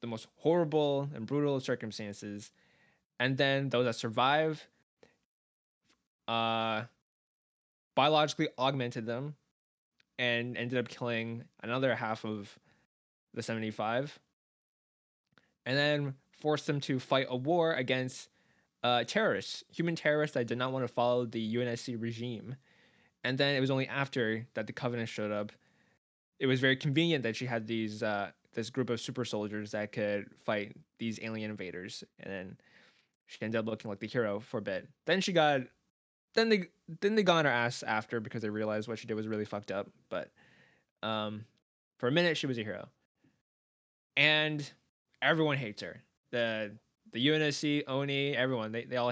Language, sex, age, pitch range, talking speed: English, male, 10-29, 110-140 Hz, 160 wpm